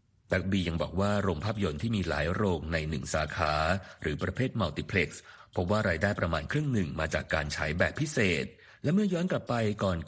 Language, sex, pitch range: Thai, male, 85-125 Hz